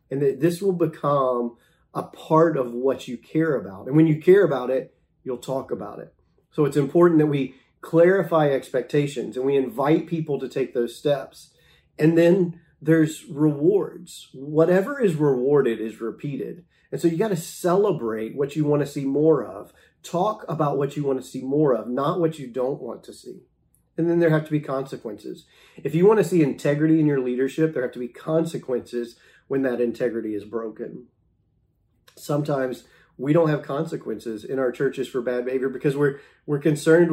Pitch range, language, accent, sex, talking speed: 130-155 Hz, English, American, male, 180 wpm